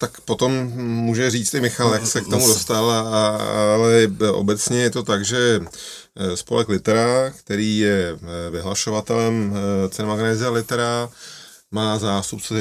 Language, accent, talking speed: Czech, native, 125 wpm